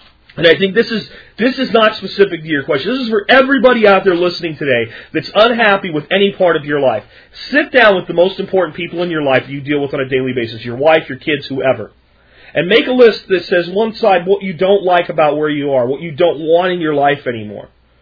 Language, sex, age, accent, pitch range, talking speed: English, male, 30-49, American, 140-225 Hz, 245 wpm